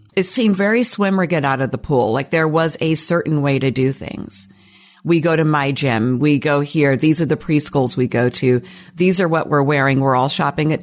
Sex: female